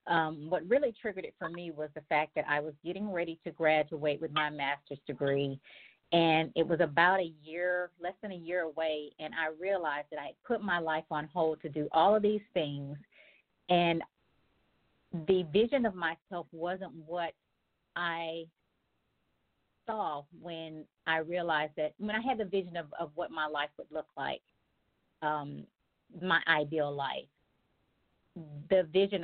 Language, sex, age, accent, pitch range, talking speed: English, female, 40-59, American, 150-175 Hz, 165 wpm